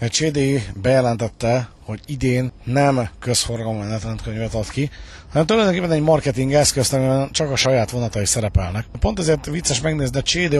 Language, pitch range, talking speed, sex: Hungarian, 115-150 Hz, 155 wpm, male